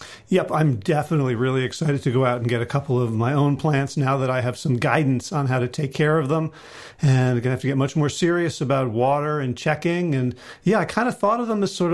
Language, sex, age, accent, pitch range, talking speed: English, male, 40-59, American, 130-170 Hz, 265 wpm